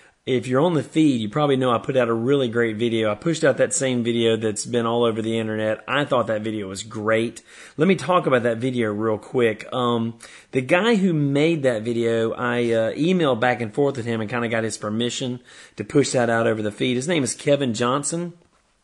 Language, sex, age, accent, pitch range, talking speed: English, male, 30-49, American, 115-145 Hz, 235 wpm